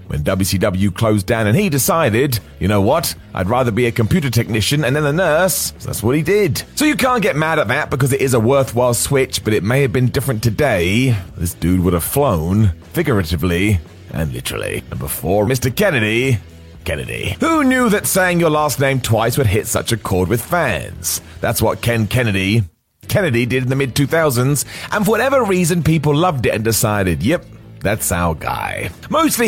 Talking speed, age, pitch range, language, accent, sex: 195 wpm, 30-49, 105-150 Hz, English, British, male